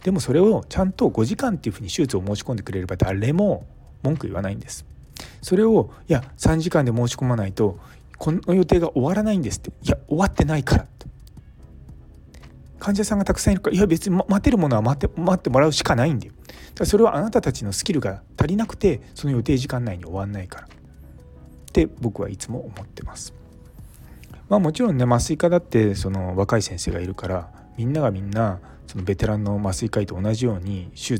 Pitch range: 95-150 Hz